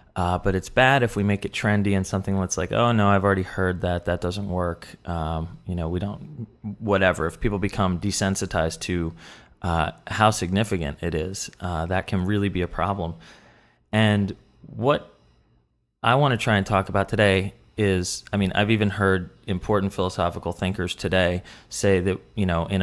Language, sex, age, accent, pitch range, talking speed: English, male, 30-49, American, 90-100 Hz, 185 wpm